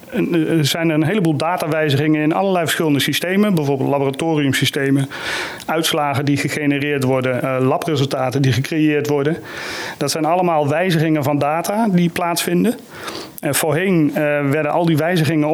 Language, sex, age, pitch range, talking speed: Dutch, male, 40-59, 145-165 Hz, 125 wpm